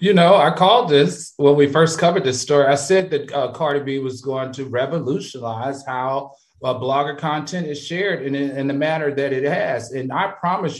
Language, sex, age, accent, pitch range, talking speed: English, male, 40-59, American, 130-180 Hz, 200 wpm